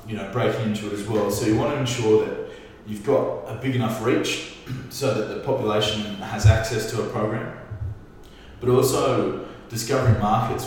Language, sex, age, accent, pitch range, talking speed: English, male, 30-49, Australian, 105-115 Hz, 180 wpm